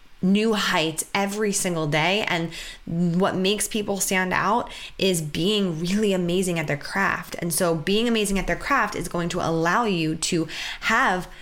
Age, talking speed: 20-39, 170 wpm